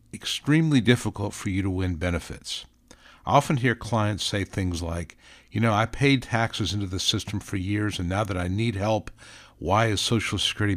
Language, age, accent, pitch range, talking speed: English, 60-79, American, 95-115 Hz, 190 wpm